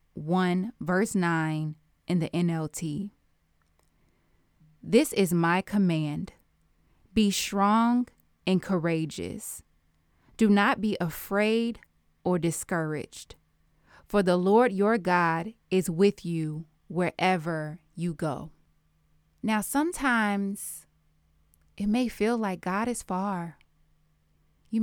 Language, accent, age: English, American, 20-39